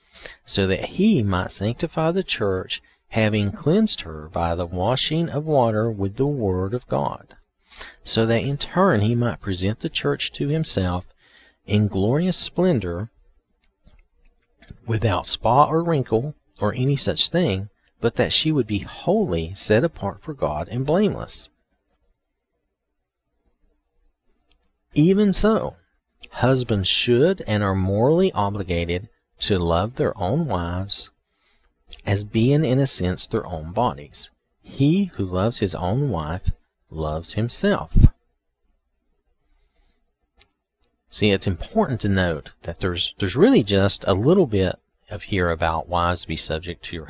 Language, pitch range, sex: English, 80-125 Hz, male